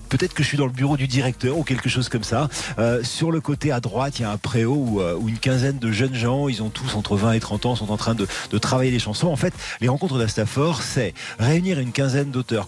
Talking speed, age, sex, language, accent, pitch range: 275 wpm, 40-59, male, French, French, 105-130 Hz